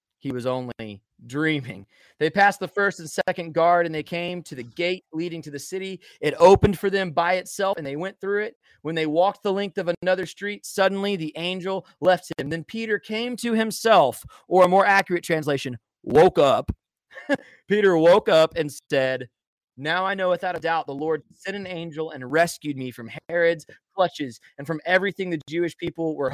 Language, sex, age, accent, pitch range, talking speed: English, male, 30-49, American, 150-195 Hz, 195 wpm